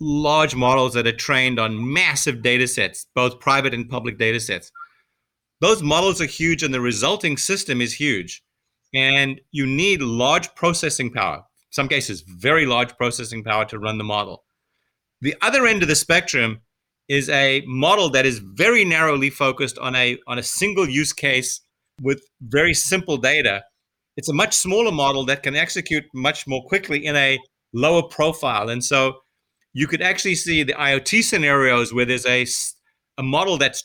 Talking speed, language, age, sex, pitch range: 170 wpm, English, 30-49, male, 125-155 Hz